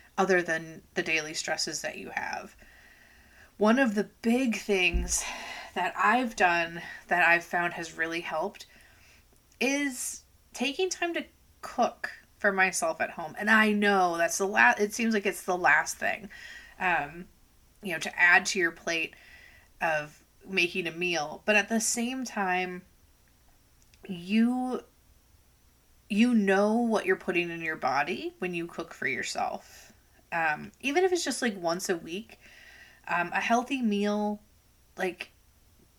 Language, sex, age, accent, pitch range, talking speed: English, female, 30-49, American, 170-225 Hz, 150 wpm